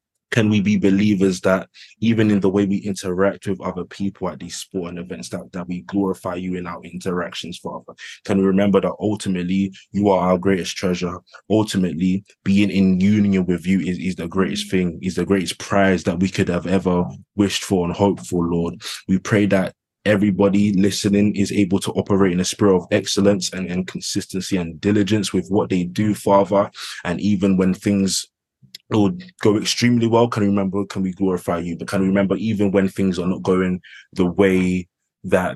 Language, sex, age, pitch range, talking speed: English, male, 20-39, 90-100 Hz, 195 wpm